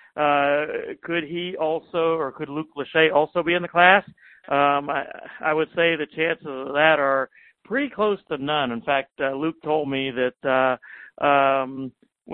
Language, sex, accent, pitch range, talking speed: English, male, American, 140-165 Hz, 170 wpm